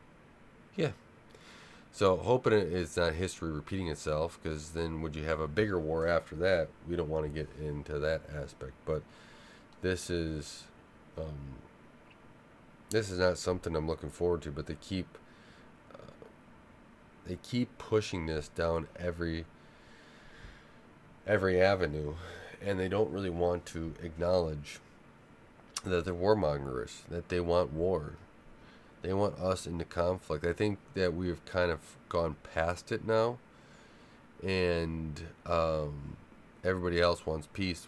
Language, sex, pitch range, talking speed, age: English, male, 80-90 Hz, 135 wpm, 30-49